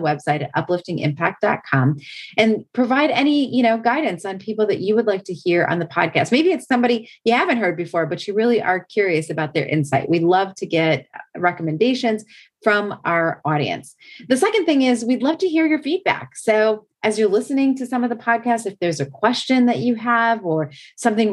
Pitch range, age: 180-245 Hz, 30-49